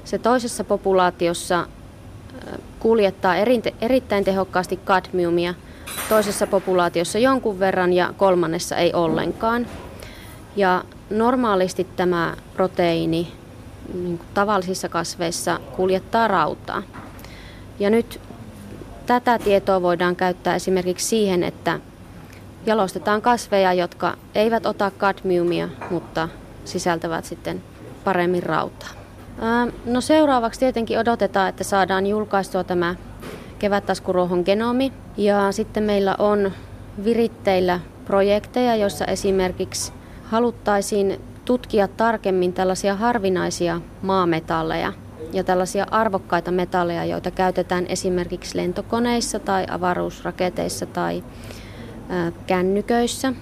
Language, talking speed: Finnish, 90 wpm